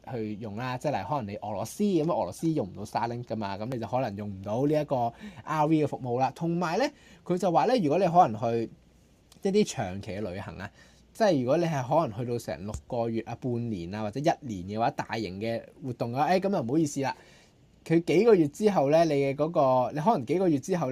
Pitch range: 110-160 Hz